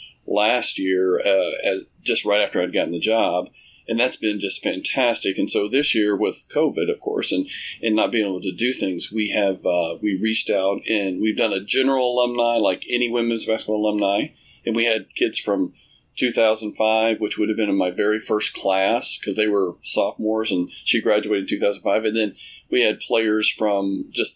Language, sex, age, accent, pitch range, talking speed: English, male, 40-59, American, 100-115 Hz, 195 wpm